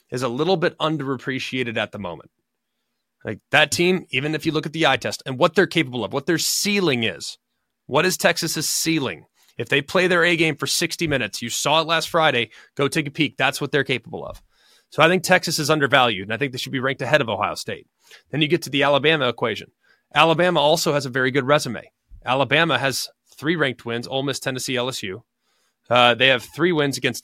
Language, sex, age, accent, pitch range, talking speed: English, male, 30-49, American, 130-165 Hz, 220 wpm